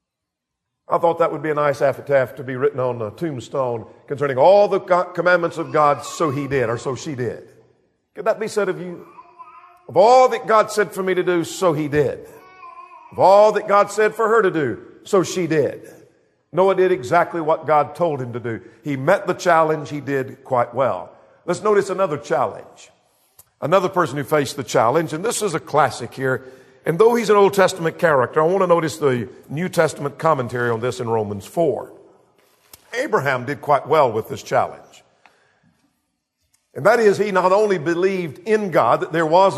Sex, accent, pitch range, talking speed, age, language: male, American, 145-195 Hz, 195 wpm, 50-69, English